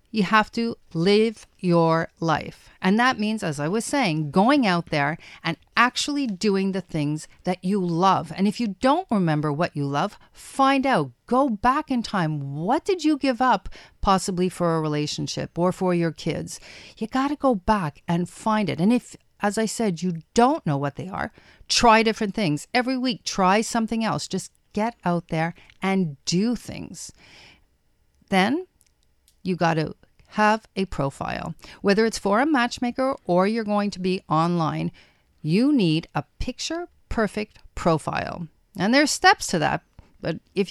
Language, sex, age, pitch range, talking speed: English, female, 50-69, 170-240 Hz, 170 wpm